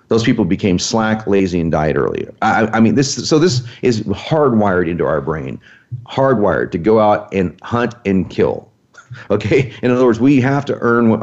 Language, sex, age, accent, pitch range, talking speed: English, male, 40-59, American, 100-125 Hz, 180 wpm